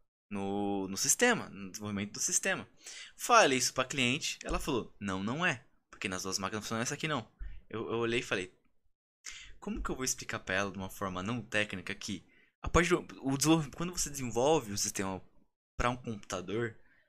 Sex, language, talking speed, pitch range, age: male, Portuguese, 195 wpm, 100-170 Hz, 20-39